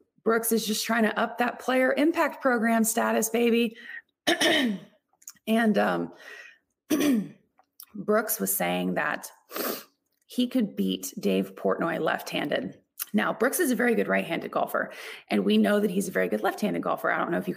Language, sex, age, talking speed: English, female, 30-49, 160 wpm